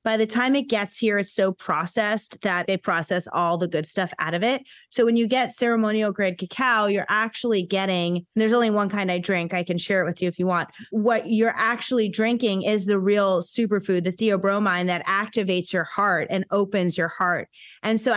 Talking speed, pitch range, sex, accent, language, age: 210 wpm, 190-240 Hz, female, American, English, 30-49